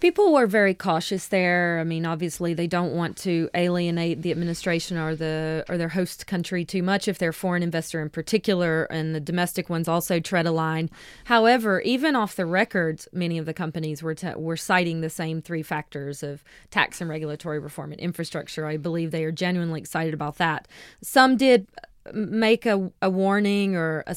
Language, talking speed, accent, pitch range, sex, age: English, 190 wpm, American, 160-185 Hz, female, 30-49